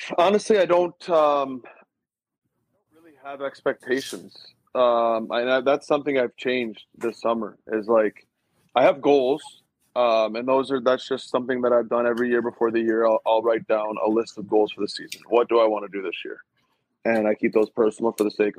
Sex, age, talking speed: male, 20-39, 205 wpm